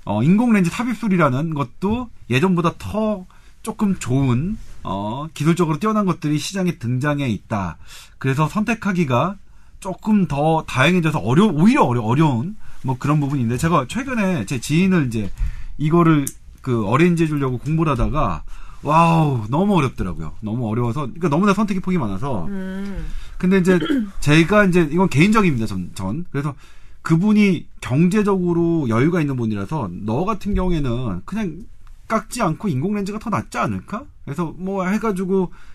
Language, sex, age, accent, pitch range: Korean, male, 40-59, native, 130-190 Hz